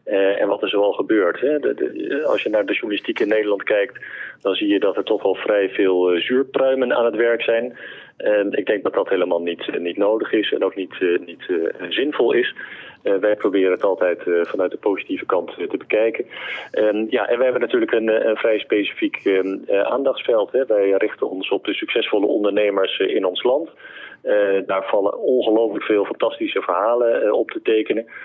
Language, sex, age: Dutch, male, 40-59